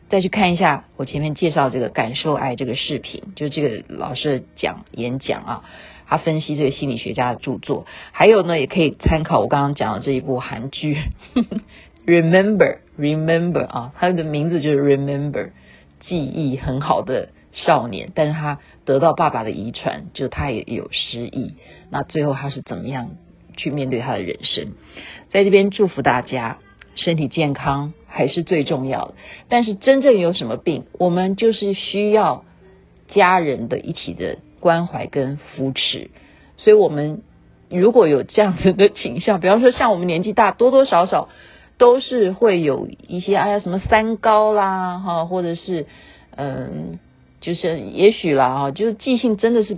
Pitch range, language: 135-200 Hz, Chinese